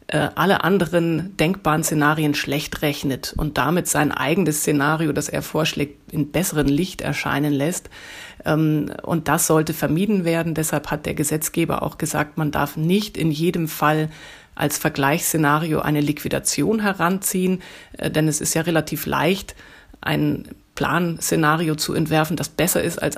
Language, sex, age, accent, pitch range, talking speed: German, female, 30-49, German, 150-170 Hz, 140 wpm